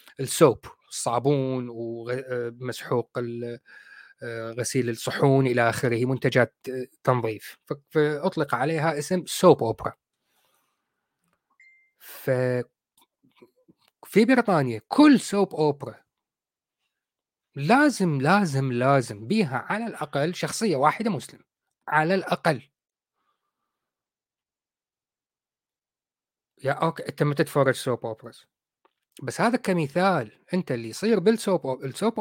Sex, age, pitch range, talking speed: male, 30-49, 125-185 Hz, 85 wpm